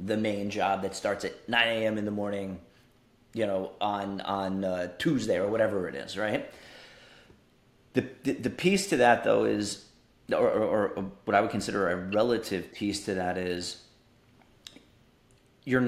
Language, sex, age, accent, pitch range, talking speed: English, male, 30-49, American, 95-120 Hz, 170 wpm